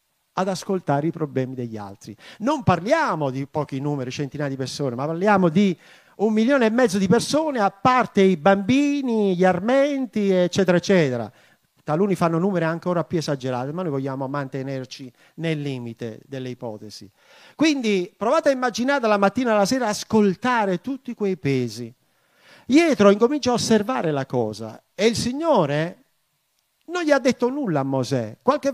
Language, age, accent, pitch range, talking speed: Italian, 50-69, native, 145-230 Hz, 155 wpm